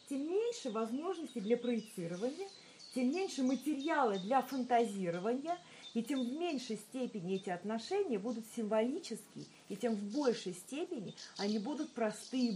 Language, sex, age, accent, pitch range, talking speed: Russian, female, 40-59, native, 220-275 Hz, 130 wpm